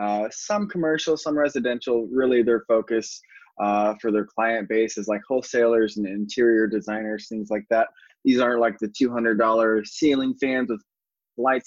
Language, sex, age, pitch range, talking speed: English, male, 20-39, 105-130 Hz, 160 wpm